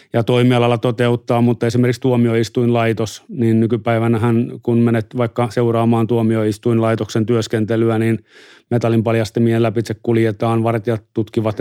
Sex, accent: male, native